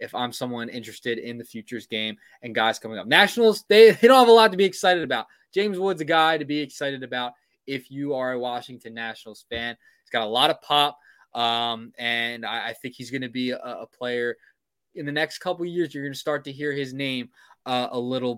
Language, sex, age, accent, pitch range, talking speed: English, male, 20-39, American, 115-150 Hz, 240 wpm